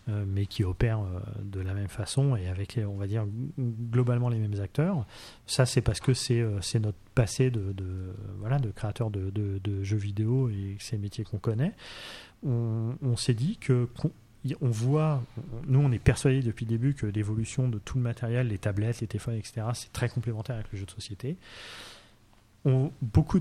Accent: French